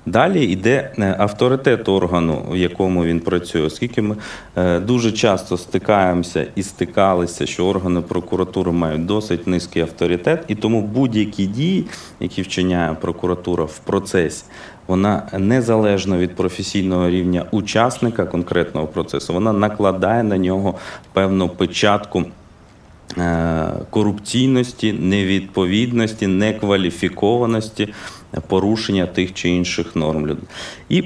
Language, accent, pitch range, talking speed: Ukrainian, native, 90-110 Hz, 105 wpm